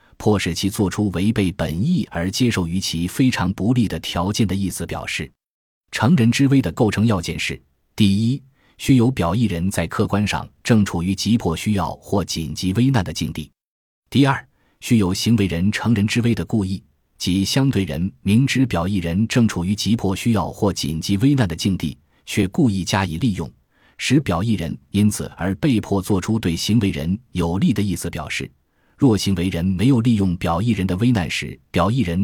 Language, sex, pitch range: Chinese, male, 85-115 Hz